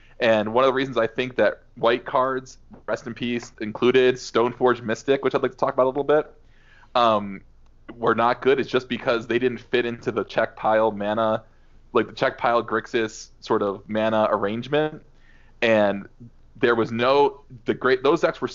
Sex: male